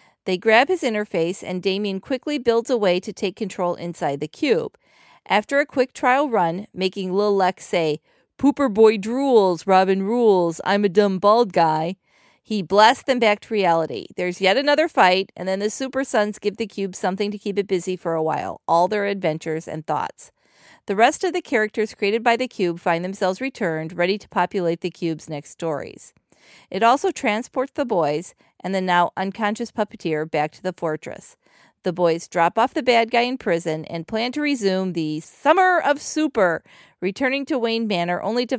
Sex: female